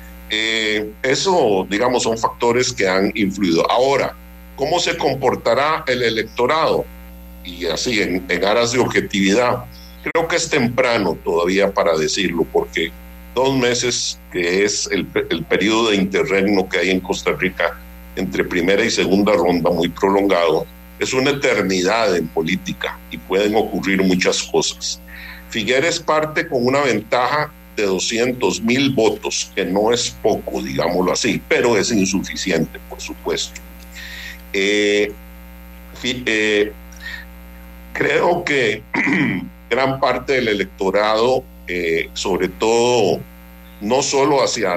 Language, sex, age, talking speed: Spanish, male, 50-69, 125 wpm